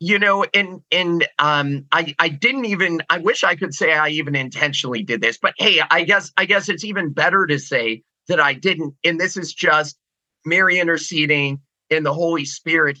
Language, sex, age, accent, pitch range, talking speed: English, male, 30-49, American, 140-170 Hz, 200 wpm